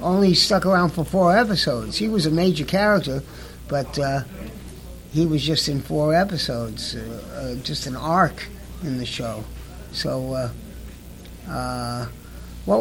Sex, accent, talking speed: male, American, 145 wpm